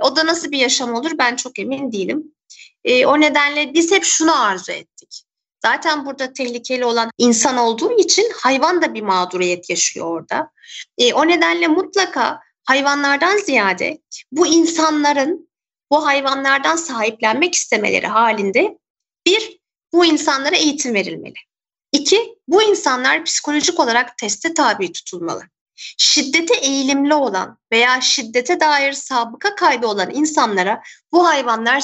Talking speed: 130 wpm